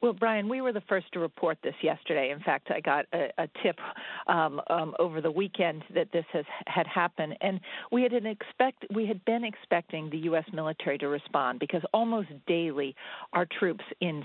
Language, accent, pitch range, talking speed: English, American, 155-195 Hz, 200 wpm